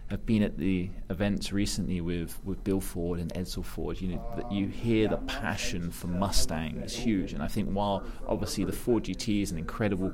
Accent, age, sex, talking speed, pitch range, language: British, 20-39, male, 205 wpm, 85-100 Hz, English